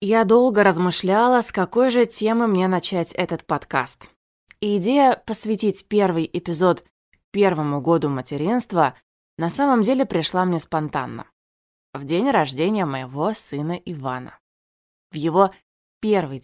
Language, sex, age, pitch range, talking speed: Russian, female, 20-39, 140-200 Hz, 125 wpm